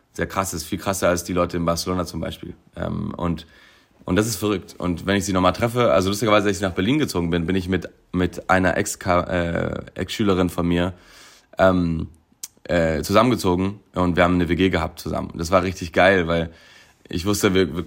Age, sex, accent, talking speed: 30-49, male, German, 210 wpm